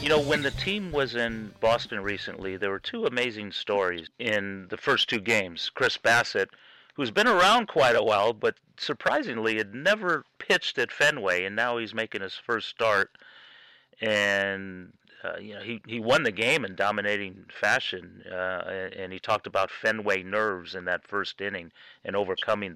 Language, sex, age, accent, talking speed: English, male, 40-59, American, 175 wpm